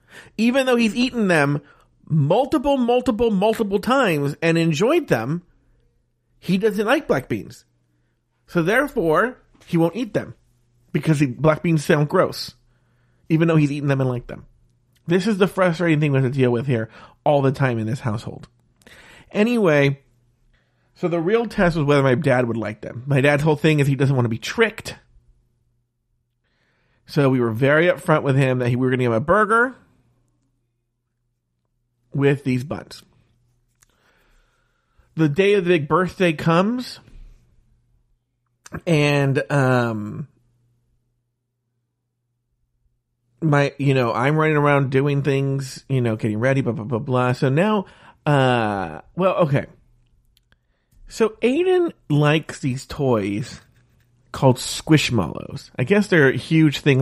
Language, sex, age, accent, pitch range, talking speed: English, male, 40-59, American, 120-165 Hz, 145 wpm